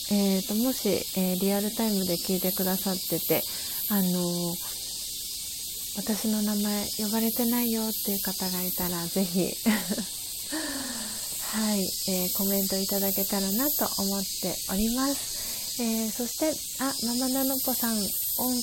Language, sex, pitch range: Japanese, female, 180-225 Hz